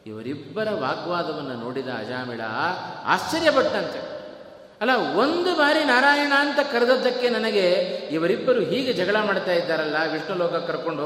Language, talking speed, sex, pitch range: Kannada, 110 wpm, male, 125-210 Hz